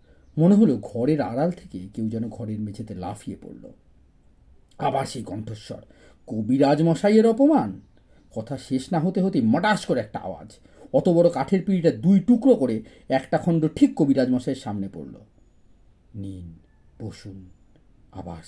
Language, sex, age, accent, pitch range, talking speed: Bengali, male, 40-59, native, 95-150 Hz, 135 wpm